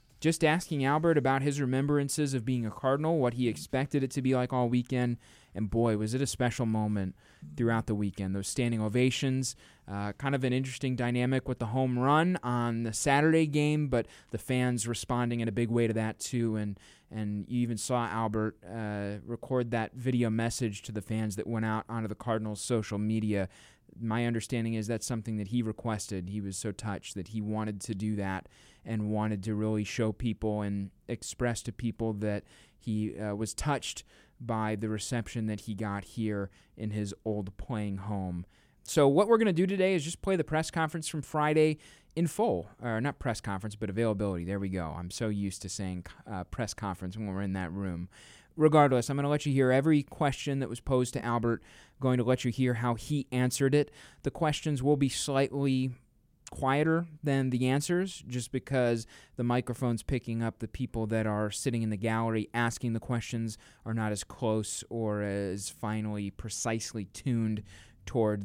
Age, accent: 20-39, American